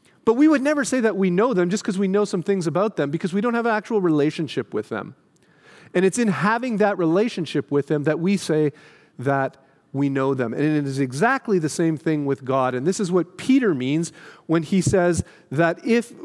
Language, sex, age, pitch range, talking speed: English, male, 40-59, 160-215 Hz, 225 wpm